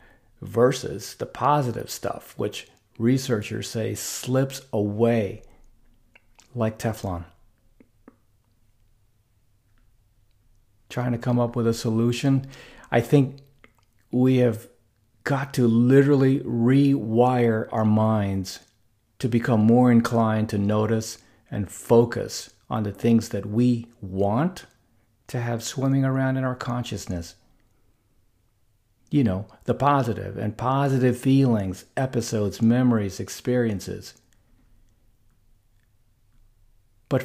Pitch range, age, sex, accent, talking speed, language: 105-125 Hz, 40-59, male, American, 95 wpm, English